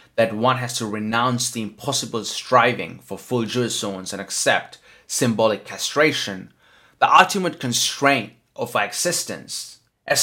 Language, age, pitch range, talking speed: English, 30-49, 110-140 Hz, 135 wpm